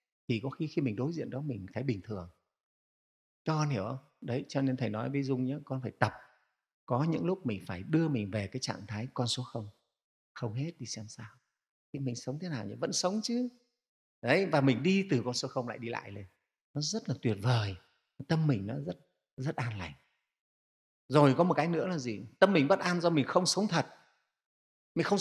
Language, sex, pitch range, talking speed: Vietnamese, male, 120-170 Hz, 230 wpm